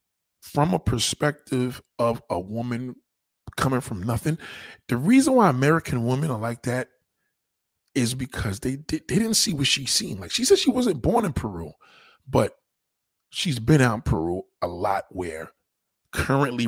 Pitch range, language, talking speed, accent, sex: 115-195 Hz, English, 160 wpm, American, male